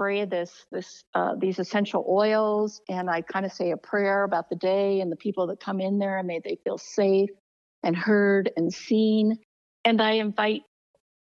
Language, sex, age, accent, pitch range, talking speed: English, female, 50-69, American, 180-220 Hz, 185 wpm